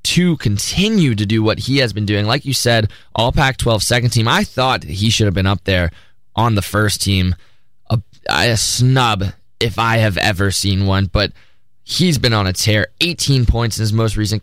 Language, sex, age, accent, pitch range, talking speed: English, male, 20-39, American, 110-145 Hz, 205 wpm